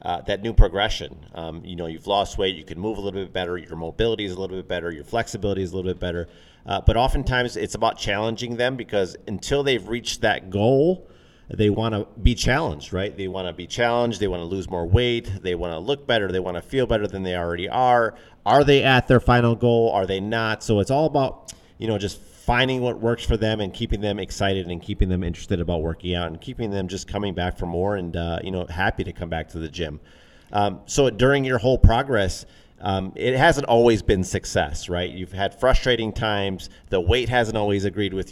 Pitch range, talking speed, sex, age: 90-115 Hz, 235 wpm, male, 30-49